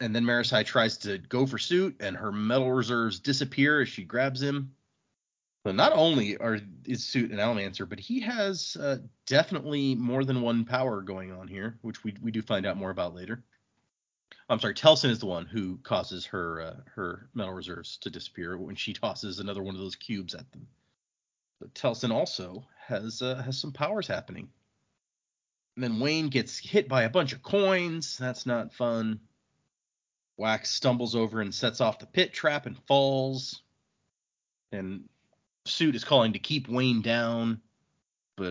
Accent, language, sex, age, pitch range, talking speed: American, English, male, 30-49, 110-140 Hz, 175 wpm